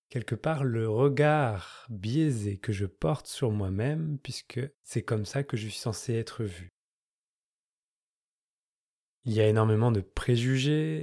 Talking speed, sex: 140 wpm, male